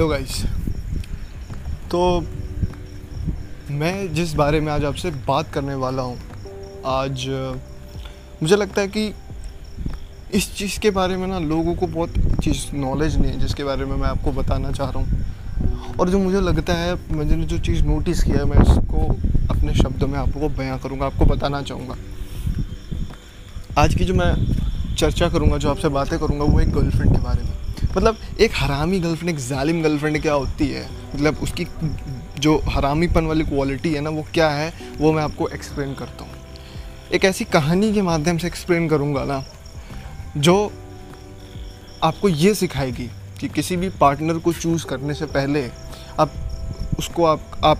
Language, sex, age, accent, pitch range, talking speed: Hindi, male, 20-39, native, 100-165 Hz, 165 wpm